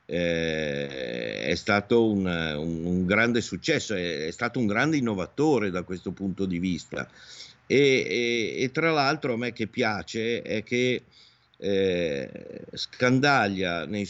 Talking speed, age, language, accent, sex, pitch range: 130 wpm, 50-69, Italian, native, male, 100-120 Hz